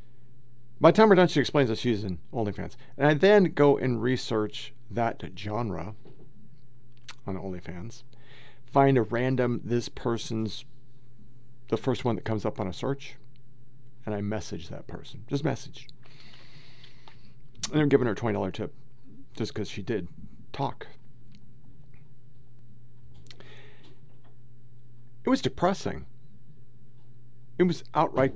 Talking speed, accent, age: 125 wpm, American, 50-69